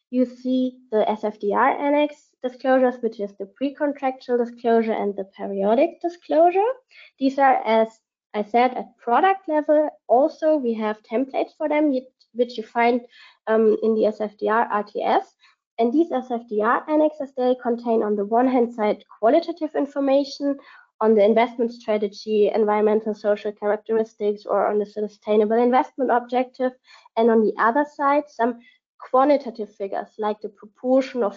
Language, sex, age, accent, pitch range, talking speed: German, female, 20-39, German, 220-285 Hz, 145 wpm